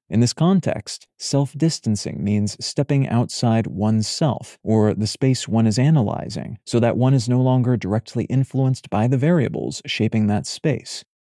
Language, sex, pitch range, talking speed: English, male, 110-135 Hz, 150 wpm